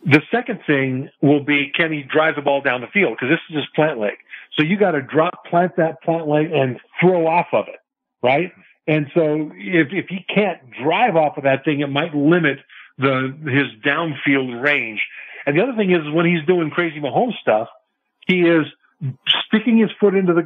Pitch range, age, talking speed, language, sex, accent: 145-175 Hz, 50-69, 205 wpm, English, male, American